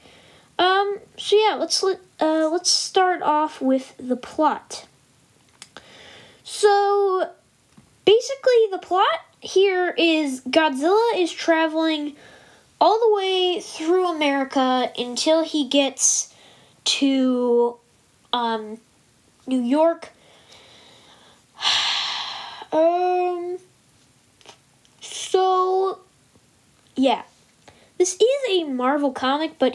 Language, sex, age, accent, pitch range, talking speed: English, female, 10-29, American, 270-380 Hz, 85 wpm